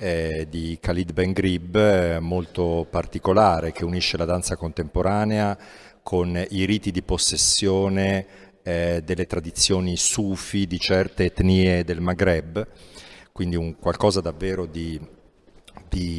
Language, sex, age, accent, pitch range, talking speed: Italian, male, 40-59, native, 90-100 Hz, 110 wpm